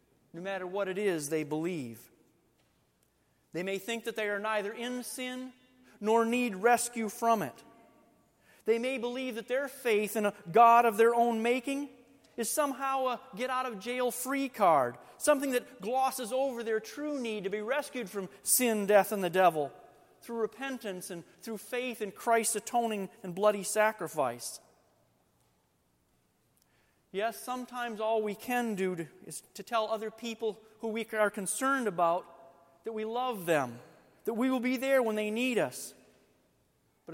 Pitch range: 190-240 Hz